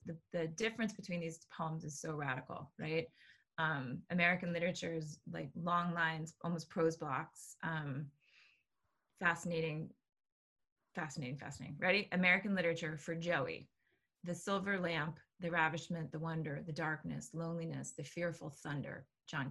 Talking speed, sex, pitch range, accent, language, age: 130 wpm, female, 155-175 Hz, American, English, 20-39